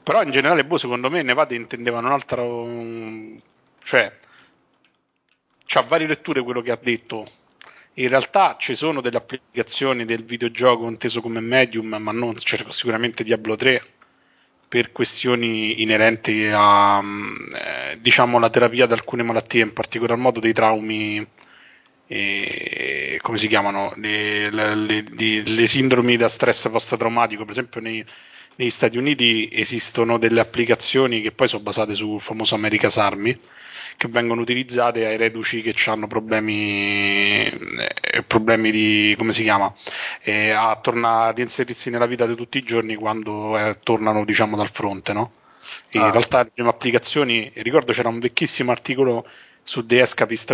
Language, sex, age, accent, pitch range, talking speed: Italian, male, 30-49, native, 110-120 Hz, 145 wpm